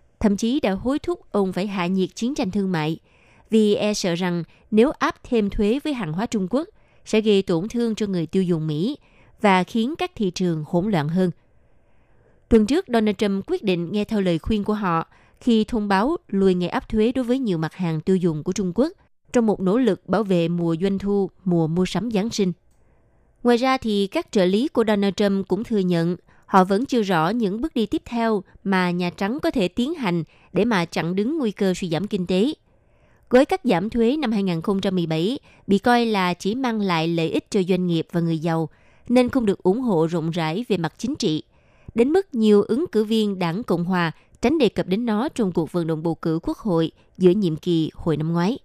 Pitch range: 175-225 Hz